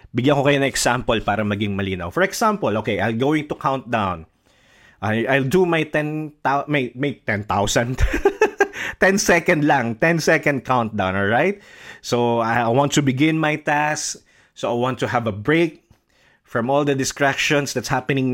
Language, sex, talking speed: English, male, 165 wpm